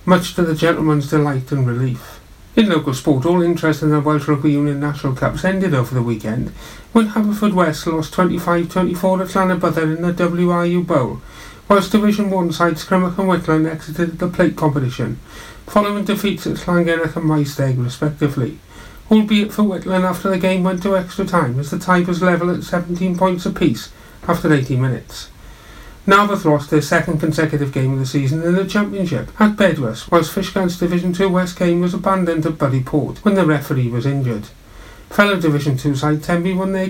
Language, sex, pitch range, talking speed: English, male, 145-185 Hz, 180 wpm